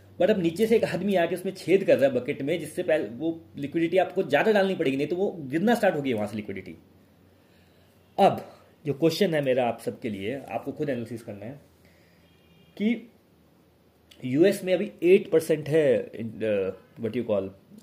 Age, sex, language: 30-49, male, Hindi